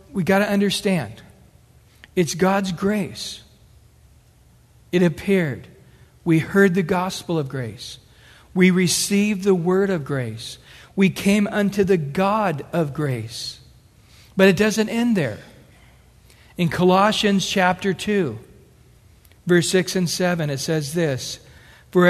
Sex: male